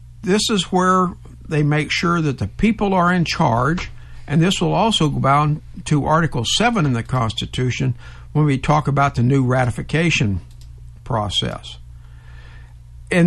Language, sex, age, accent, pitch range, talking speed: English, male, 60-79, American, 115-170 Hz, 150 wpm